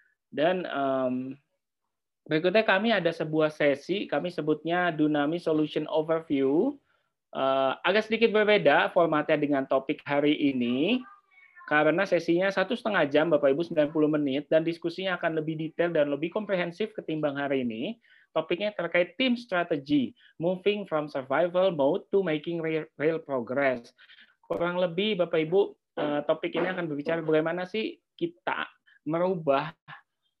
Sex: male